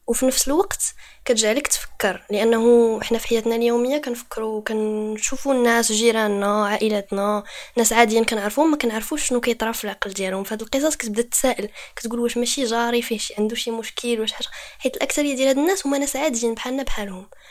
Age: 20-39